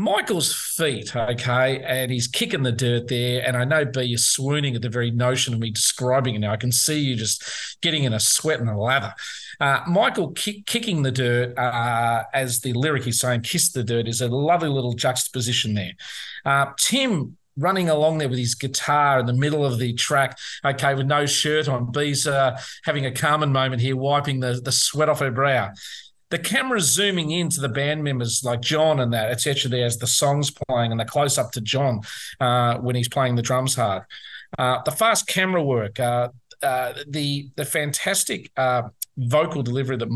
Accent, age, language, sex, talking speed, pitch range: Australian, 40-59, English, male, 200 wpm, 120-145 Hz